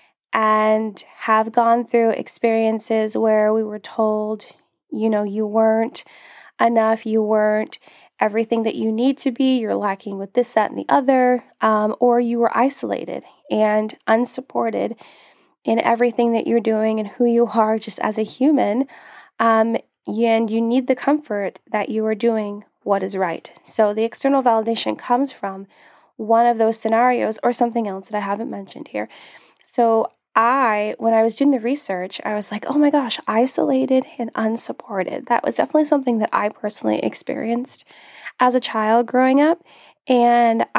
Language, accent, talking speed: English, American, 165 wpm